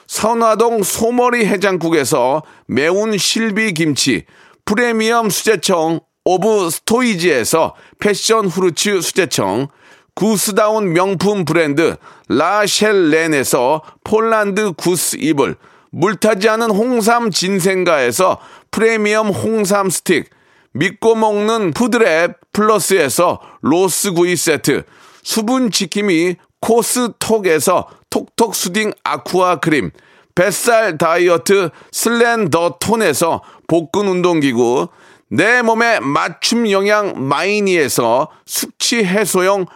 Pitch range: 180-225 Hz